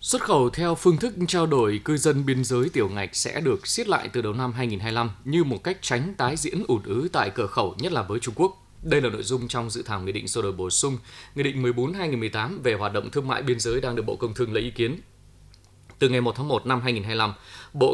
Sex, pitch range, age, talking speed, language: male, 105-140 Hz, 20-39, 255 wpm, Vietnamese